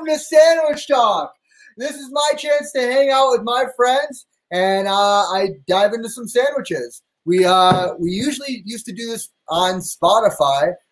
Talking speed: 165 wpm